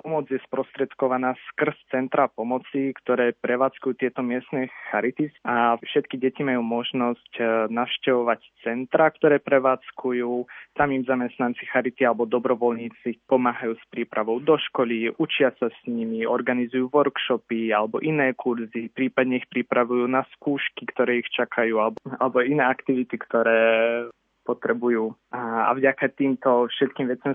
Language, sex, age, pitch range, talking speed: Slovak, male, 20-39, 115-130 Hz, 130 wpm